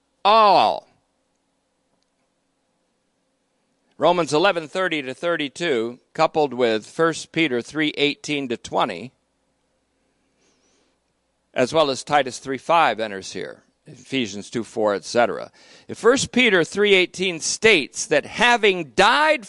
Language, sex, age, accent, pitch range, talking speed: English, male, 50-69, American, 155-235 Hz, 105 wpm